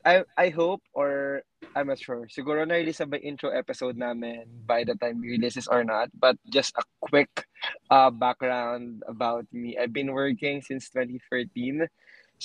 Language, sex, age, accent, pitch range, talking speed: Filipino, male, 20-39, native, 120-145 Hz, 160 wpm